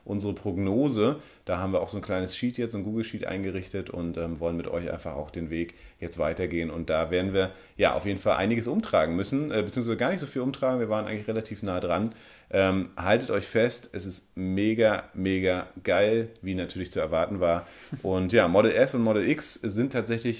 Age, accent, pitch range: 40-59, German, 90-110 Hz